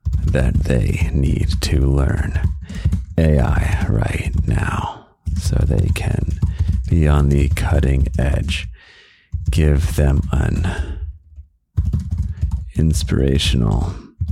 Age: 40-59